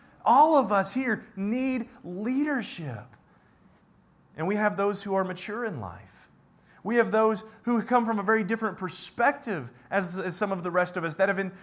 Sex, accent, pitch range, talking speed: male, American, 190-245 Hz, 185 wpm